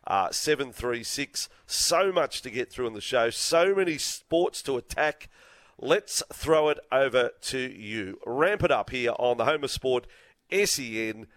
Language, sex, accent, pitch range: English, male, Australian, 120-180 Hz